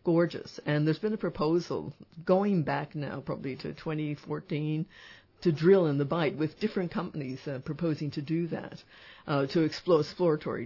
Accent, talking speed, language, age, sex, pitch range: American, 165 wpm, English, 60-79, female, 145-170 Hz